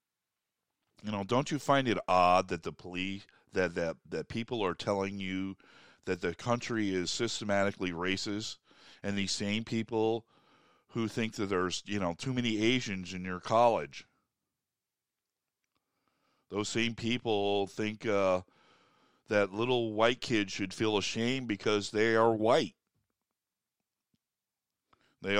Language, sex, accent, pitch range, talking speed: English, male, American, 95-115 Hz, 130 wpm